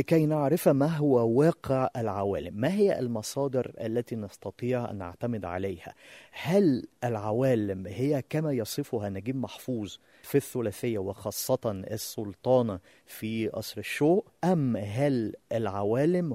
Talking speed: 115 wpm